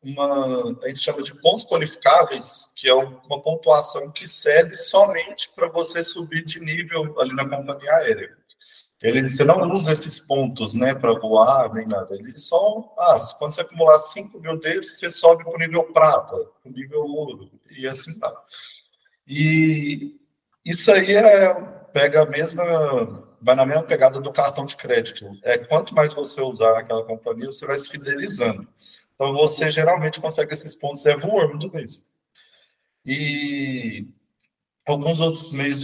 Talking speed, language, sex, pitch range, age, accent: 155 wpm, Portuguese, male, 140-170 Hz, 20-39, Brazilian